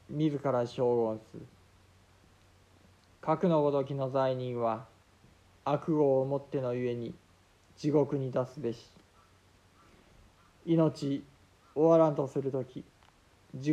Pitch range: 110-150 Hz